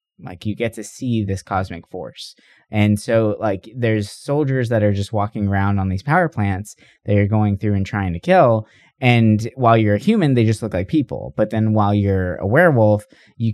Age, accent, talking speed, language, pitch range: 20-39, American, 210 wpm, English, 100-130 Hz